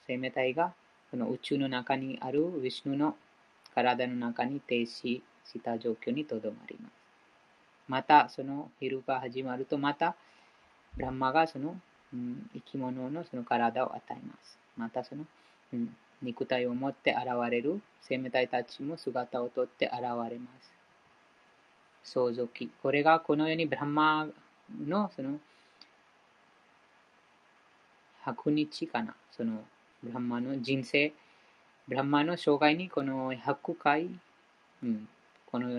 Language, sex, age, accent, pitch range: Japanese, female, 20-39, Indian, 125-165 Hz